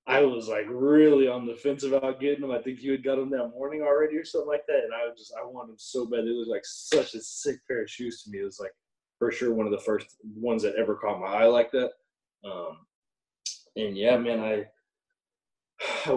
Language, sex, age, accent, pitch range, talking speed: English, male, 20-39, American, 115-160 Hz, 245 wpm